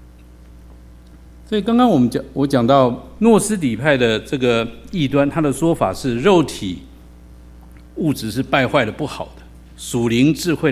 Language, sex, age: Chinese, male, 50-69